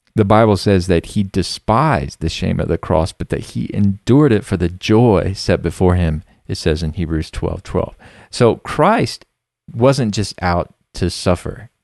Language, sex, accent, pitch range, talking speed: English, male, American, 90-110 Hz, 175 wpm